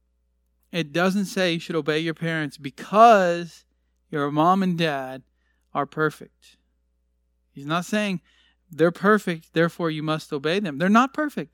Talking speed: 145 wpm